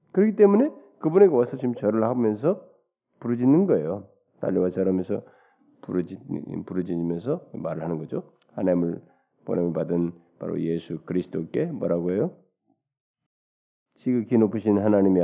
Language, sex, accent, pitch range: Korean, male, native, 100-155 Hz